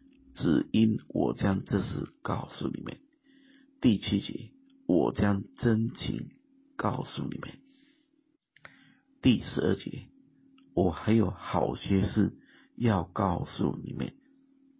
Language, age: Chinese, 50-69